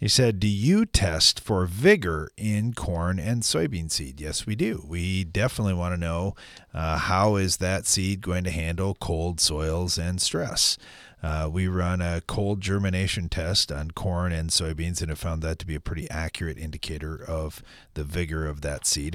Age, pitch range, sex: 40-59, 80-100 Hz, male